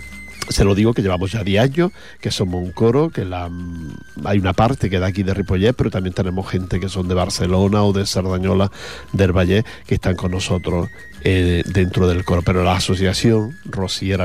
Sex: male